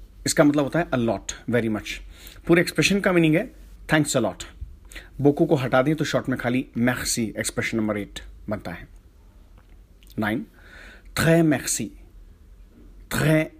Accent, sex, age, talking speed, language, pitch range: Indian, male, 40-59, 125 wpm, English, 100-160 Hz